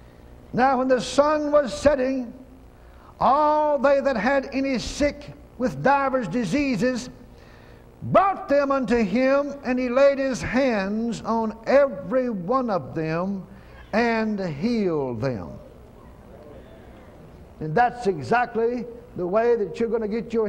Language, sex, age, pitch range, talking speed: English, male, 60-79, 175-240 Hz, 125 wpm